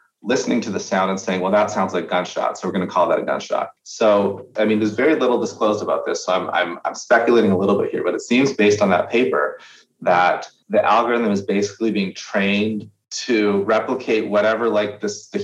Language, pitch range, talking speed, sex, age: English, 100-115 Hz, 220 wpm, male, 30-49